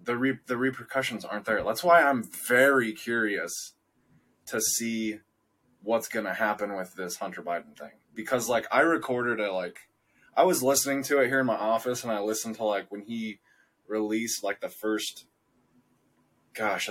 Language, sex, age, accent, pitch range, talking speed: English, male, 20-39, American, 100-120 Hz, 175 wpm